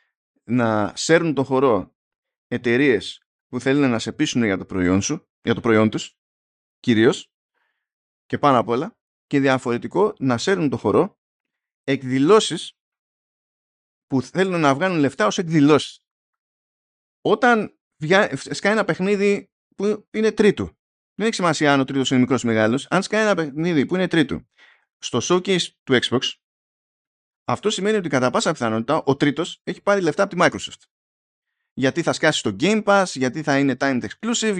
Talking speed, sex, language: 155 wpm, male, Greek